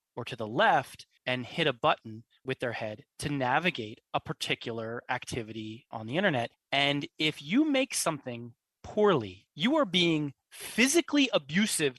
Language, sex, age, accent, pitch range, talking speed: English, male, 20-39, American, 125-185 Hz, 150 wpm